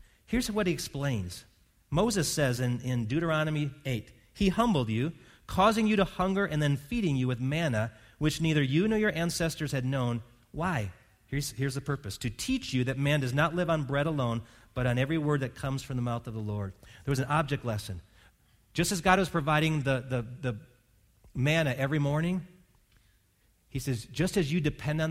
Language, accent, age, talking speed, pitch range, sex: English, American, 40-59, 195 wpm, 120-175 Hz, male